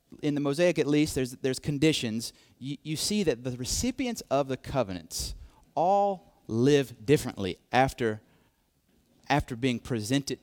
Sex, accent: male, American